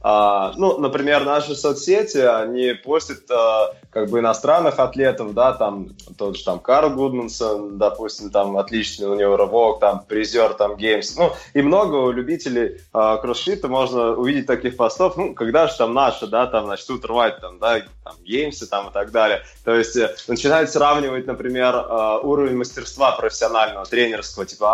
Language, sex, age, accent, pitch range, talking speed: Russian, male, 20-39, native, 110-135 Hz, 150 wpm